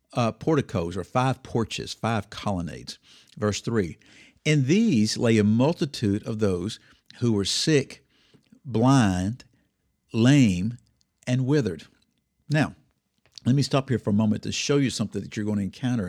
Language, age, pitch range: English, 60-79, 100-140 Hz